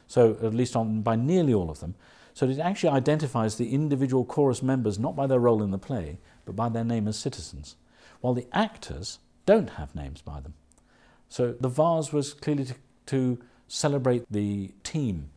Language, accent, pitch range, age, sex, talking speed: English, British, 85-130 Hz, 50-69, male, 185 wpm